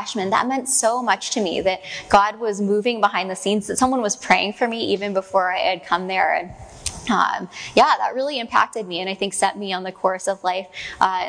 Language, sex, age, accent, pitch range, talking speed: English, female, 20-39, American, 190-225 Hz, 230 wpm